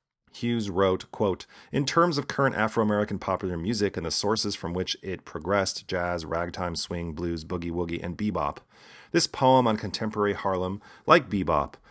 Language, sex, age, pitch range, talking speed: English, male, 40-59, 90-110 Hz, 155 wpm